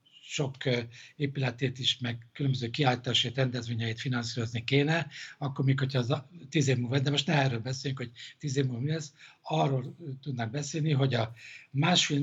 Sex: male